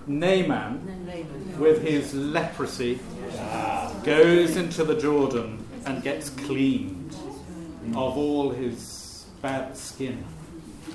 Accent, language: British, English